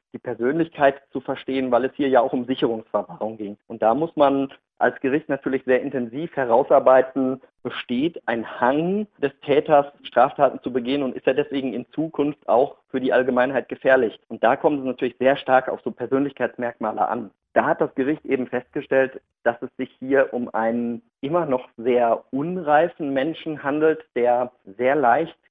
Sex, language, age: male, German, 40-59